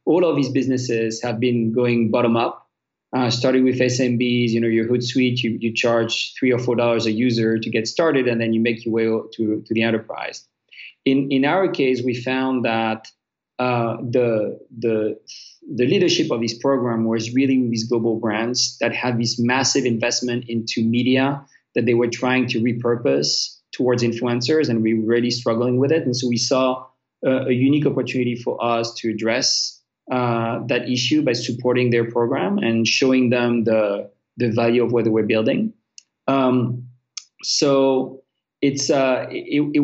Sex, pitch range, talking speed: male, 115-130 Hz, 180 wpm